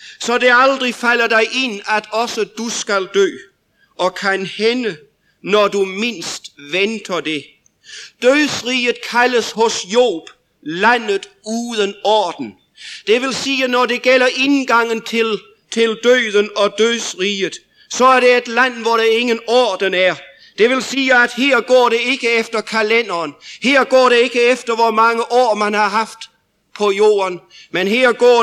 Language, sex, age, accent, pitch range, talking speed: English, male, 50-69, German, 195-240 Hz, 155 wpm